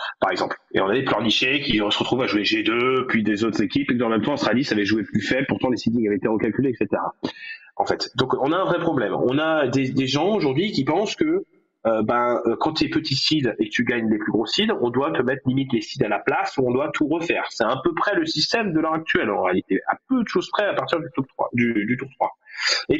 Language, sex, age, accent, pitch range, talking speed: French, male, 30-49, French, 135-200 Hz, 280 wpm